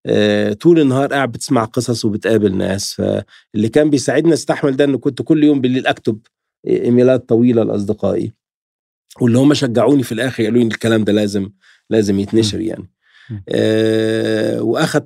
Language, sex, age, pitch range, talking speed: Arabic, male, 50-69, 105-130 Hz, 145 wpm